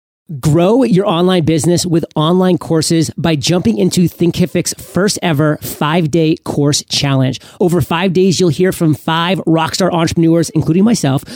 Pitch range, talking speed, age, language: 150-180 Hz, 145 wpm, 40-59, English